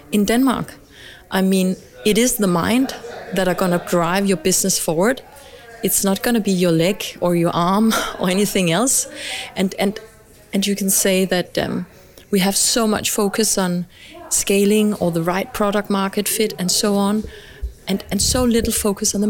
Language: Polish